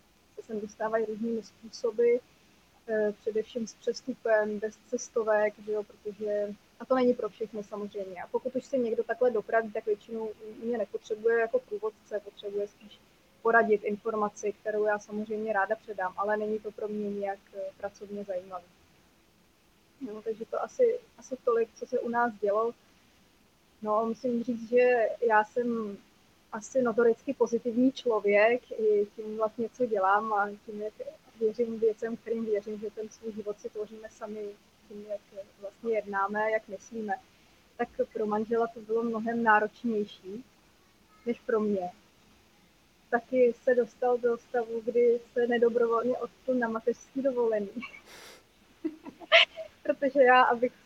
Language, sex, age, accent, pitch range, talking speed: Czech, female, 20-39, native, 215-245 Hz, 140 wpm